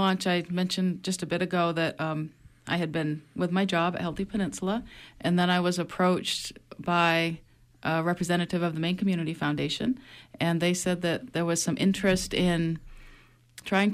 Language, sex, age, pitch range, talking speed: English, female, 30-49, 160-180 Hz, 170 wpm